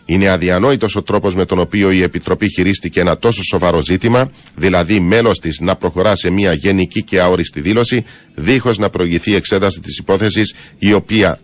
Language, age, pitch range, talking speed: Greek, 40-59, 90-110 Hz, 175 wpm